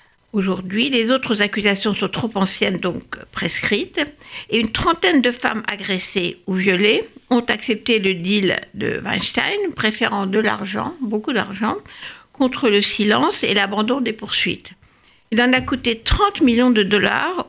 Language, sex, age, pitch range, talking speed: French, female, 60-79, 205-270 Hz, 150 wpm